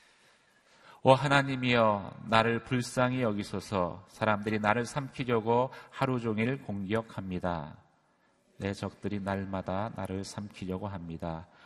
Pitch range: 95-120 Hz